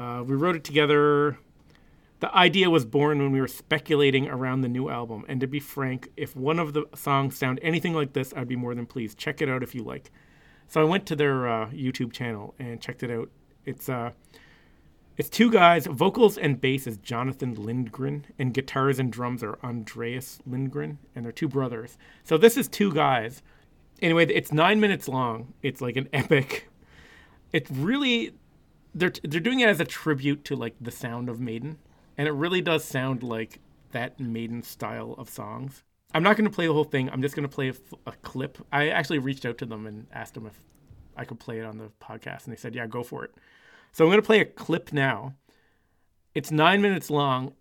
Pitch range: 120-150 Hz